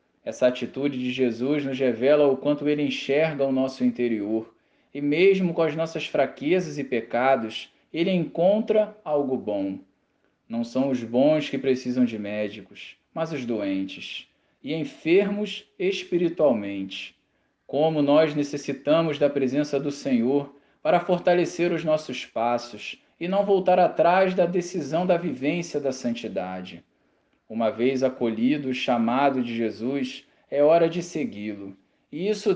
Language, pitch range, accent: Portuguese, 125-175 Hz, Brazilian